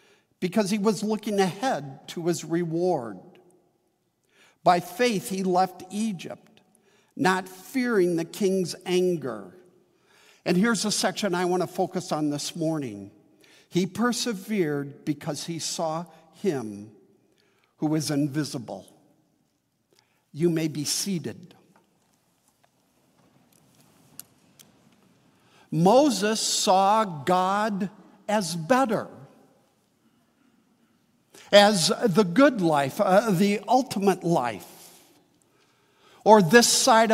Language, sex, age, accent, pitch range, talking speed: English, male, 60-79, American, 165-215 Hz, 95 wpm